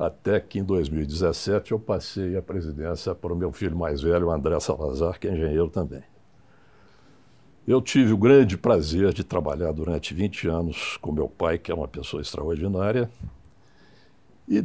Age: 60-79